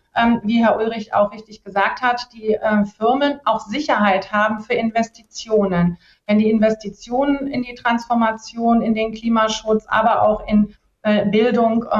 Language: German